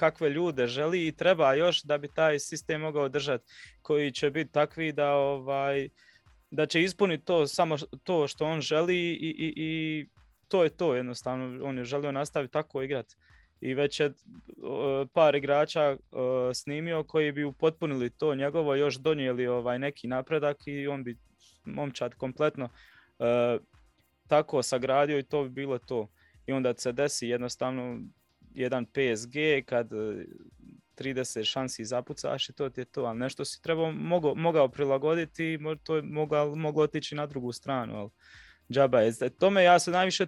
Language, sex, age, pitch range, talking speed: Croatian, male, 20-39, 125-155 Hz, 155 wpm